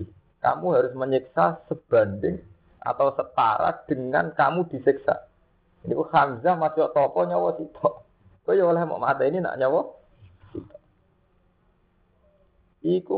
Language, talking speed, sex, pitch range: Indonesian, 100 wpm, male, 95-155 Hz